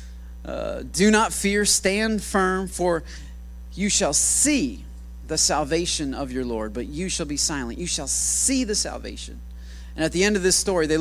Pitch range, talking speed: 140-200 Hz, 180 wpm